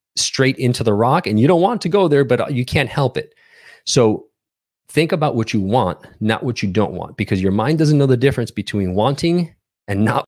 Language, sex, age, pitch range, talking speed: English, male, 30-49, 105-135 Hz, 220 wpm